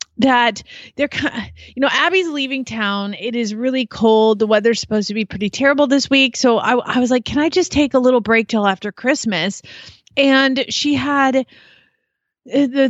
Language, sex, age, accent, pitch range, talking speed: English, female, 30-49, American, 195-265 Hz, 180 wpm